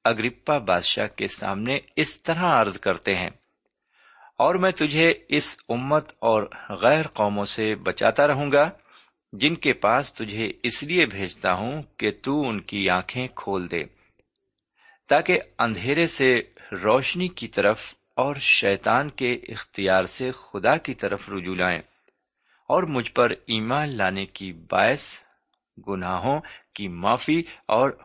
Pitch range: 95-145 Hz